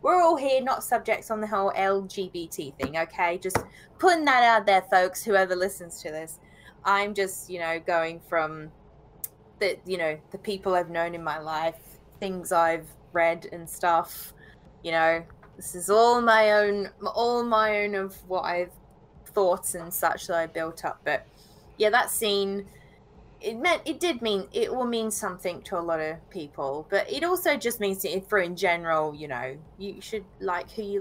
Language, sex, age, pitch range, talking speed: English, female, 20-39, 165-215 Hz, 185 wpm